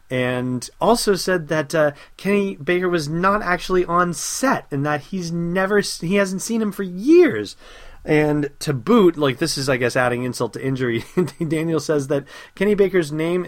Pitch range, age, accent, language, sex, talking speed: 115-155 Hz, 30-49, American, English, male, 180 wpm